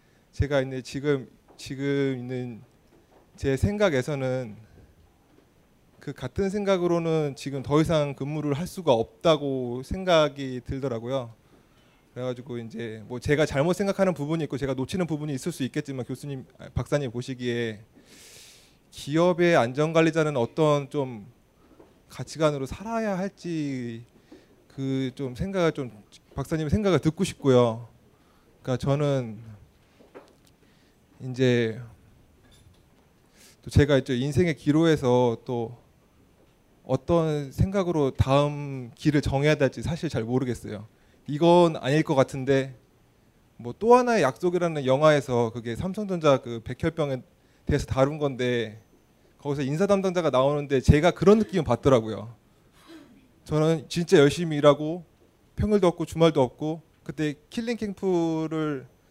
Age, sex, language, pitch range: 20-39, male, Korean, 125-160 Hz